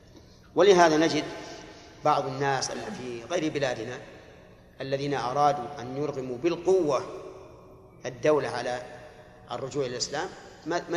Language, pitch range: Arabic, 135-165 Hz